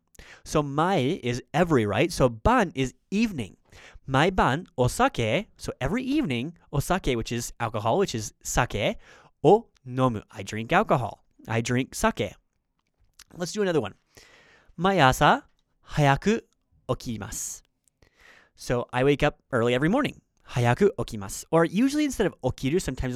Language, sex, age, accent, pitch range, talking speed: English, male, 30-49, American, 115-170 Hz, 145 wpm